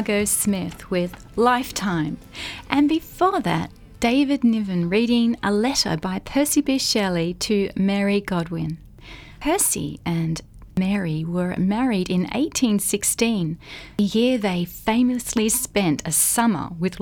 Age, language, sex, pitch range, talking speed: 30-49, English, female, 175-235 Hz, 115 wpm